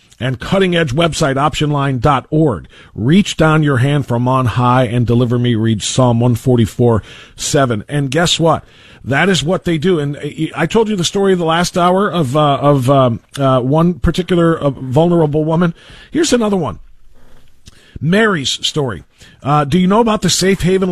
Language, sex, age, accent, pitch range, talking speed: English, male, 40-59, American, 125-170 Hz, 165 wpm